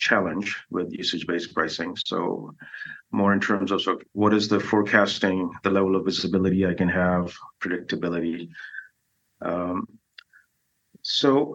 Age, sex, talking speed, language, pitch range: 30-49, male, 125 wpm, English, 100-125 Hz